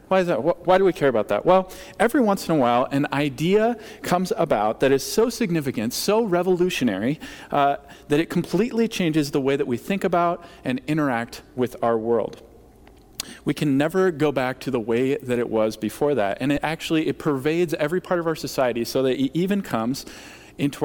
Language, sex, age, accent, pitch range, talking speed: English, male, 40-59, American, 130-170 Hz, 200 wpm